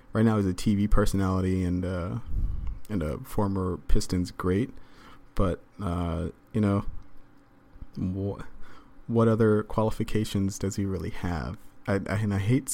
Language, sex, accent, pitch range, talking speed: English, male, American, 90-105 Hz, 140 wpm